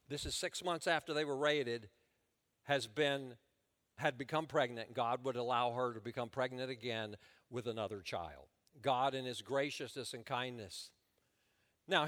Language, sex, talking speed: English, male, 155 wpm